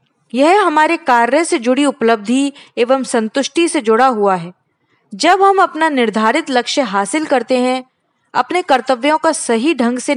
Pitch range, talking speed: 230-305 Hz, 155 wpm